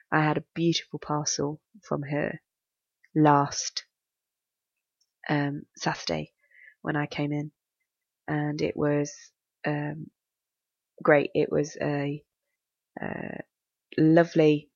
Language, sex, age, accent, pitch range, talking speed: English, female, 20-39, British, 145-155 Hz, 100 wpm